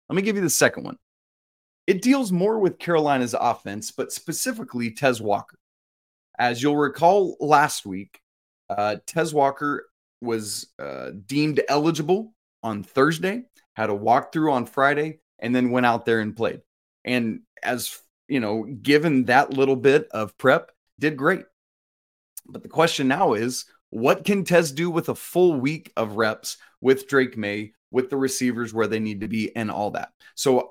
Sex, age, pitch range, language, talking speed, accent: male, 30-49, 110-160 Hz, English, 165 wpm, American